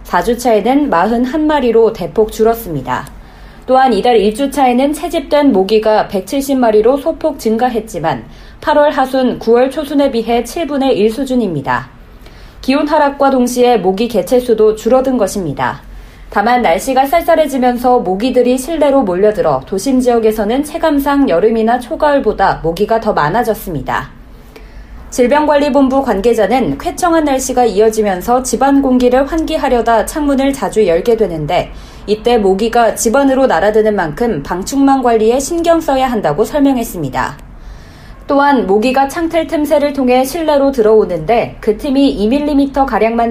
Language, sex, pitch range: Korean, female, 215-275 Hz